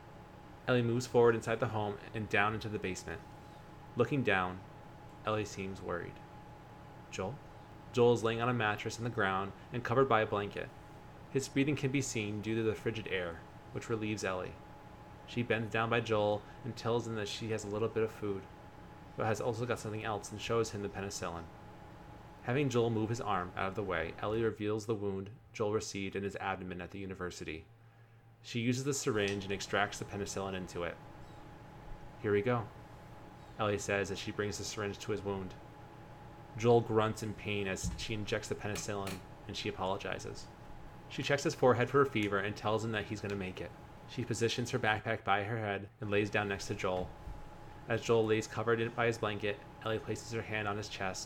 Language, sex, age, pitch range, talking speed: English, male, 20-39, 100-120 Hz, 200 wpm